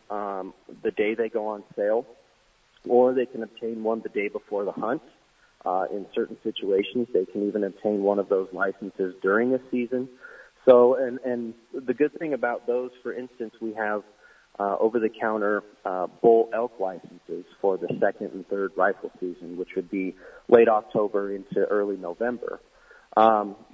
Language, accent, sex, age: English, American, male, 40-59